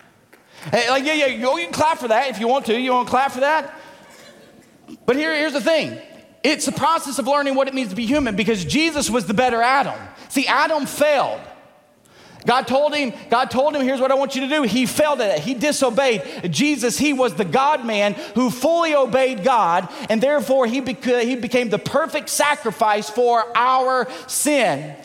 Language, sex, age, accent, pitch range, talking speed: English, male, 40-59, American, 235-290 Hz, 200 wpm